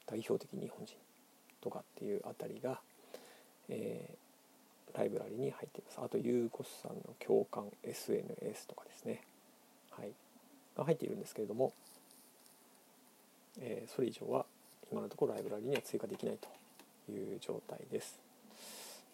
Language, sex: Japanese, male